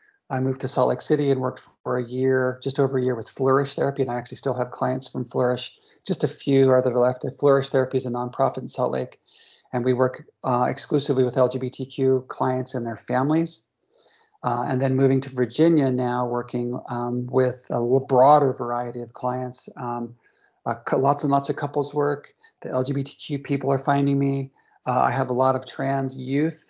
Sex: male